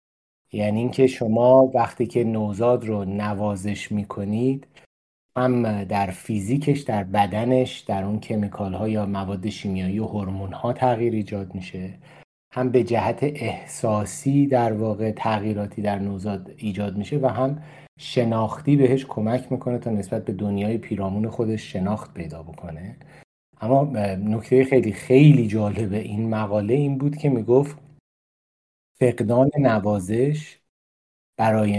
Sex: male